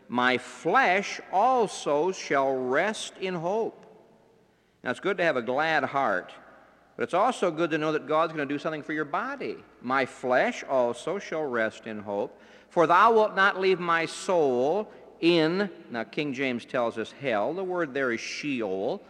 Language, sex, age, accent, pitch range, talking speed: English, male, 50-69, American, 115-180 Hz, 175 wpm